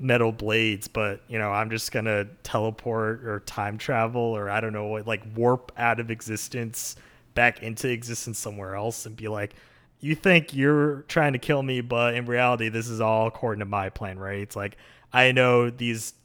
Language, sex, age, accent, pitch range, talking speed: English, male, 20-39, American, 110-130 Hz, 195 wpm